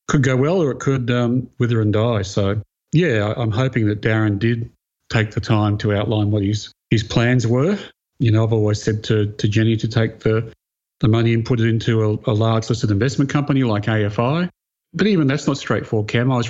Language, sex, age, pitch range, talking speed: English, male, 40-59, 105-125 Hz, 220 wpm